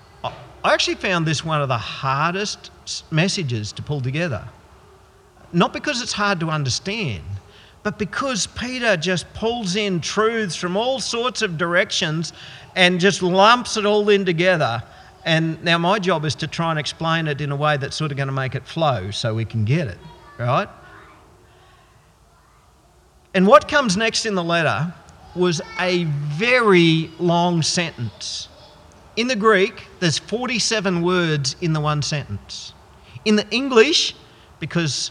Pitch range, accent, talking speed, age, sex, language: 135-195 Hz, Australian, 155 wpm, 50-69, male, English